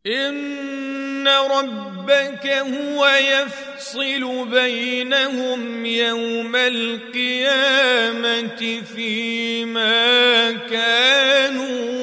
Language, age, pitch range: Arabic, 40-59, 245-275 Hz